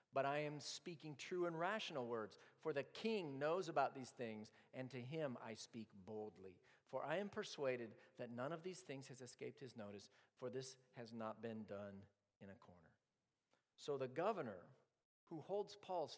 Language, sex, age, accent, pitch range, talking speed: English, male, 50-69, American, 110-155 Hz, 180 wpm